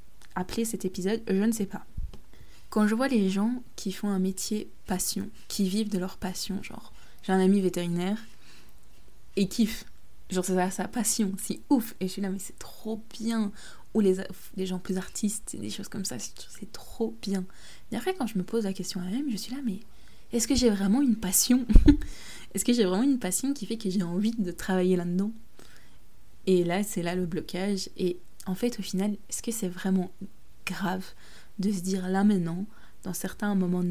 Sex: female